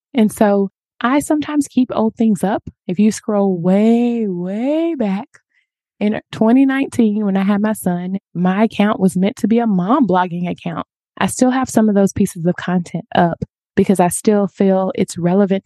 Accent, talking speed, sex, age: American, 180 wpm, female, 20-39